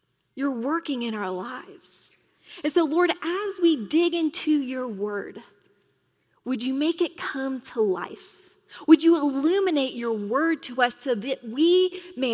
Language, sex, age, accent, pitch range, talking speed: English, female, 30-49, American, 220-320 Hz, 155 wpm